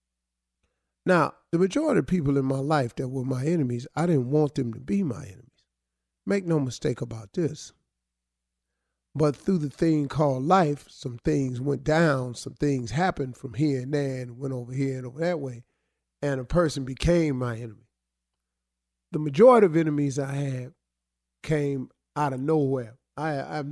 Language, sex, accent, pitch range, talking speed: English, male, American, 120-150 Hz, 175 wpm